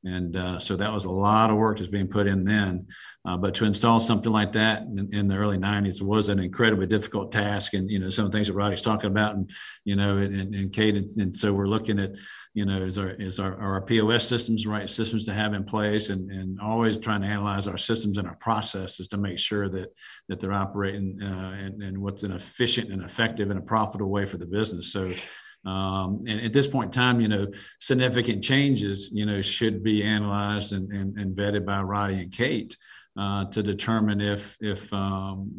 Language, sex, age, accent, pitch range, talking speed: English, male, 50-69, American, 100-110 Hz, 225 wpm